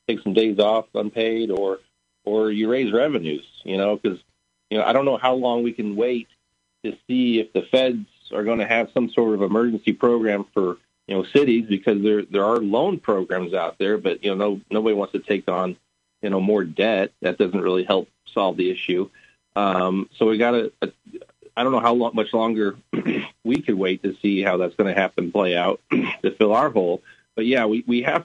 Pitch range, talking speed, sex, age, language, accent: 95-120 Hz, 210 wpm, male, 40-59, English, American